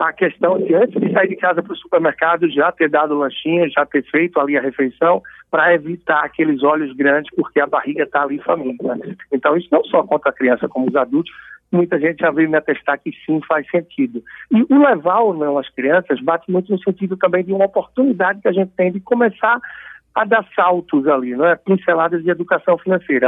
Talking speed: 210 wpm